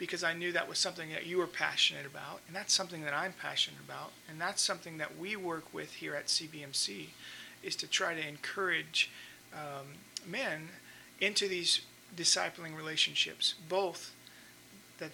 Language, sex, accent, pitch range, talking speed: English, male, American, 150-180 Hz, 165 wpm